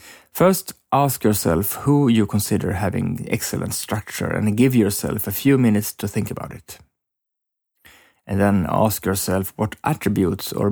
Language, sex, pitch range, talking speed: English, male, 100-125 Hz, 145 wpm